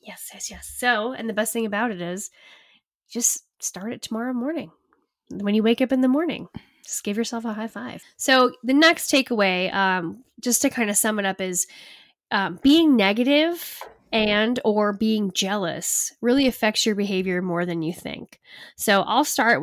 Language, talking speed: English, 185 wpm